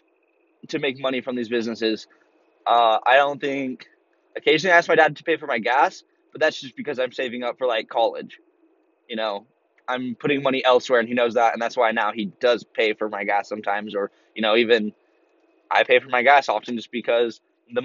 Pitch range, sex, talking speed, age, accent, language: 120-155 Hz, male, 215 wpm, 20-39, American, English